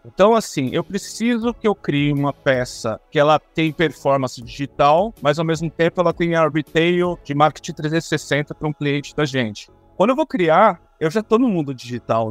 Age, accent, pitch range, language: 50-69, Brazilian, 135-170 Hz, Portuguese